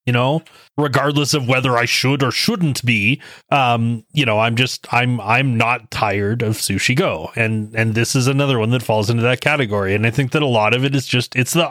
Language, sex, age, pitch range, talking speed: English, male, 30-49, 120-155 Hz, 230 wpm